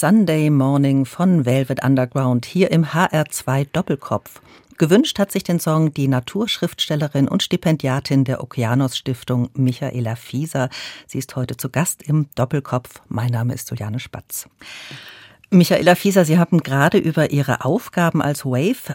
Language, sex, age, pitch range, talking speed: German, female, 50-69, 130-170 Hz, 145 wpm